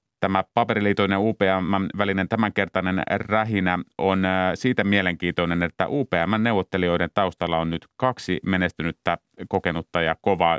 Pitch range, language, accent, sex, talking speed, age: 90-100 Hz, Finnish, native, male, 100 wpm, 30-49